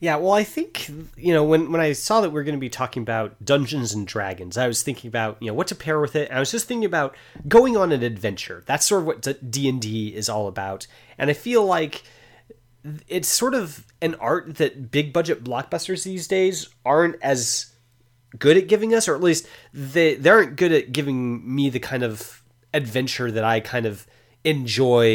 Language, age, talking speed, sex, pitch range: English, 30-49, 210 wpm, male, 115-155 Hz